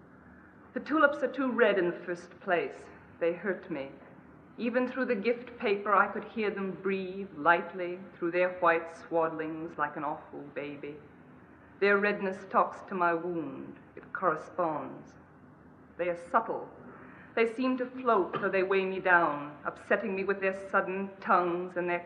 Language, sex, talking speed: English, female, 160 wpm